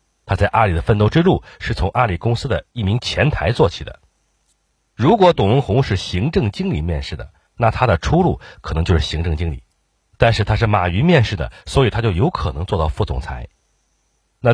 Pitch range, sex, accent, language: 85-125 Hz, male, native, Chinese